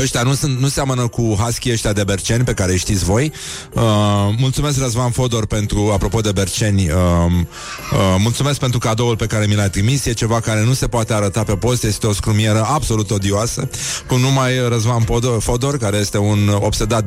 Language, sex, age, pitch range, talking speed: Romanian, male, 30-49, 100-125 Hz, 190 wpm